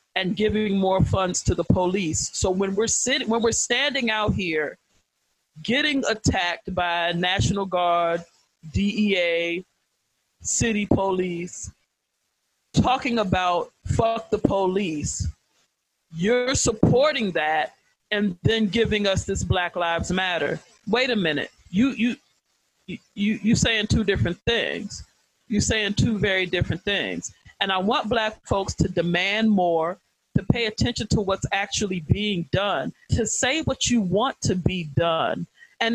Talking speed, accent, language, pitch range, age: 135 wpm, American, English, 175-225 Hz, 40-59